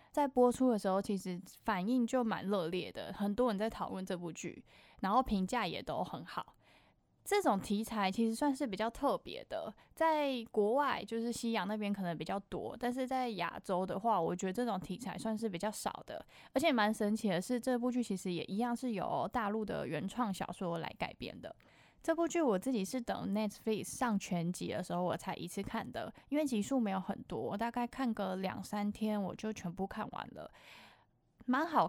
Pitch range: 190-245 Hz